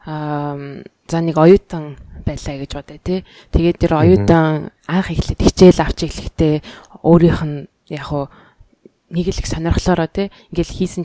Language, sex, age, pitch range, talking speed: English, female, 20-39, 150-185 Hz, 135 wpm